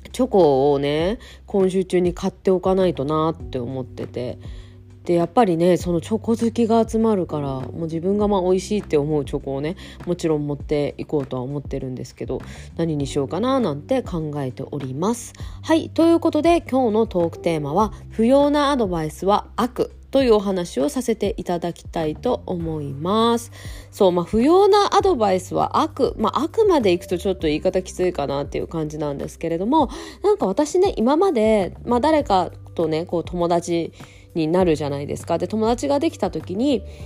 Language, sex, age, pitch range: Japanese, female, 20-39, 160-255 Hz